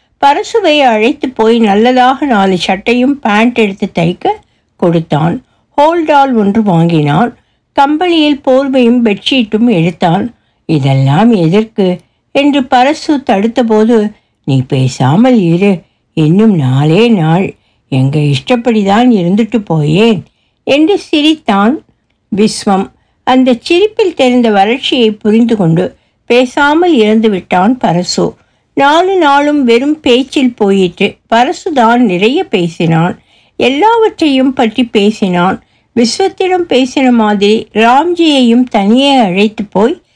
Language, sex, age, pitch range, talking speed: Tamil, female, 60-79, 175-255 Hz, 95 wpm